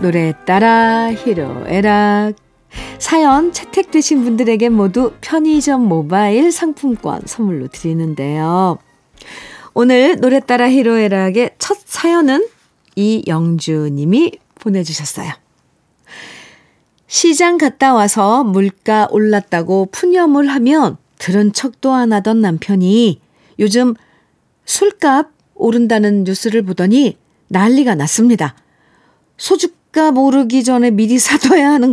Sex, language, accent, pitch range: female, Korean, native, 205-280 Hz